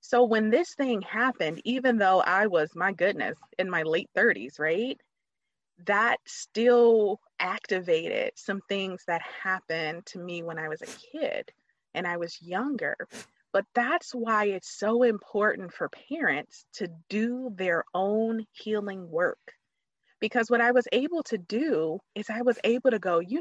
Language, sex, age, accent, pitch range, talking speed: English, female, 20-39, American, 195-280 Hz, 160 wpm